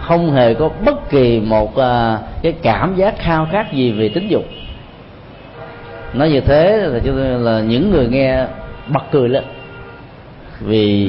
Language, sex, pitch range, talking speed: Vietnamese, male, 110-155 Hz, 145 wpm